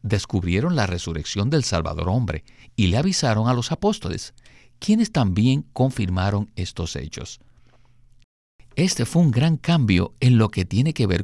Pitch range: 95-125 Hz